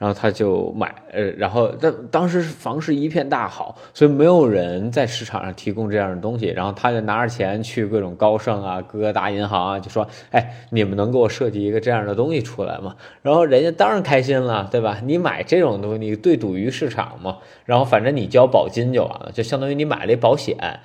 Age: 20-39